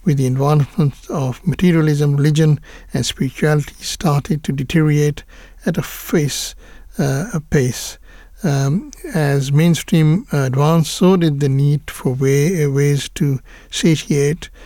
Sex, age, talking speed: male, 60-79, 125 wpm